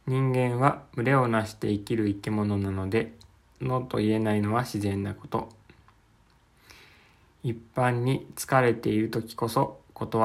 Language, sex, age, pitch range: Japanese, male, 20-39, 100-125 Hz